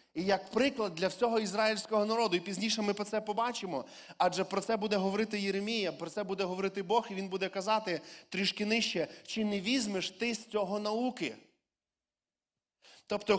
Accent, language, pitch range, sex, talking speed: native, Ukrainian, 190-225 Hz, male, 170 wpm